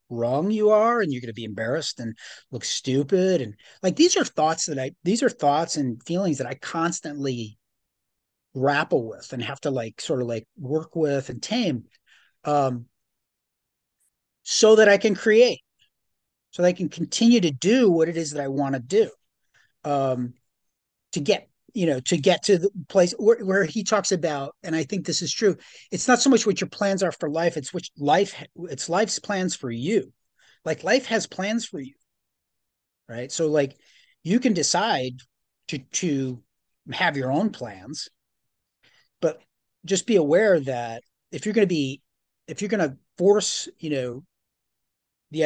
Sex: male